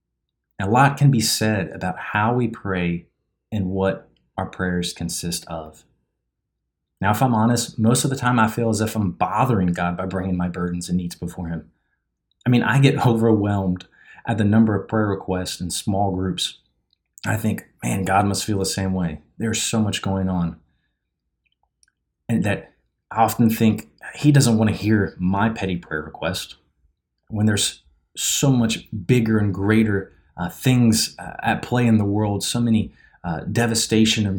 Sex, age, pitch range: male, 30-49, 90-115 Hz